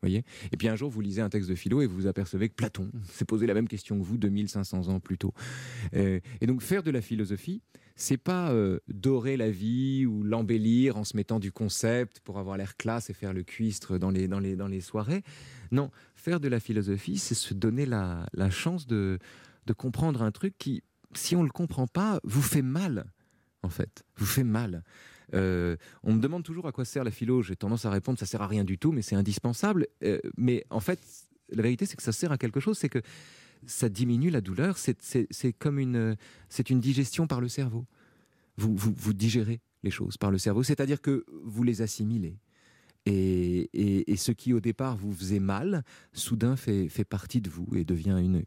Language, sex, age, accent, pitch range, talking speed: French, male, 30-49, French, 100-130 Hz, 225 wpm